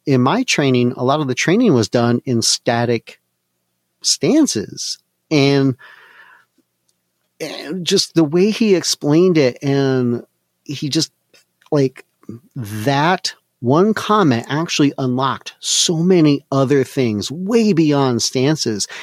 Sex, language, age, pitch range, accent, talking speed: male, English, 40-59, 110-150 Hz, American, 115 wpm